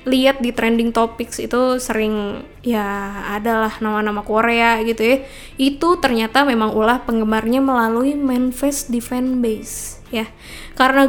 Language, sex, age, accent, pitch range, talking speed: Indonesian, female, 10-29, native, 235-280 Hz, 125 wpm